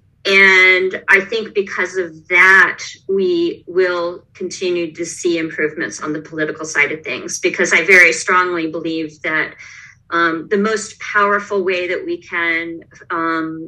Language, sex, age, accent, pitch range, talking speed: English, female, 40-59, American, 155-185 Hz, 145 wpm